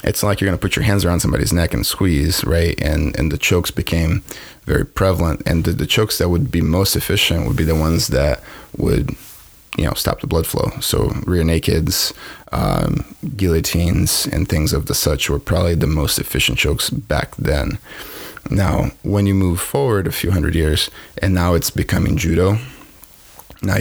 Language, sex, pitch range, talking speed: English, male, 80-100 Hz, 185 wpm